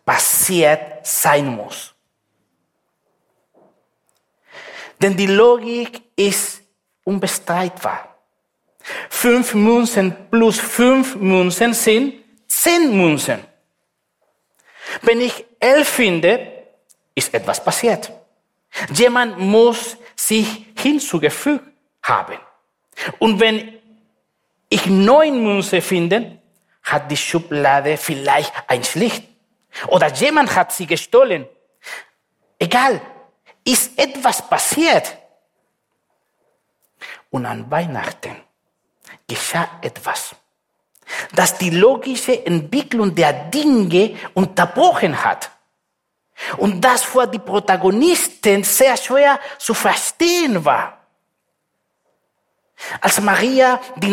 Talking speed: 85 wpm